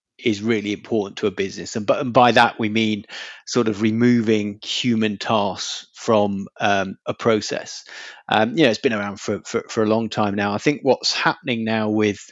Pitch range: 110-125 Hz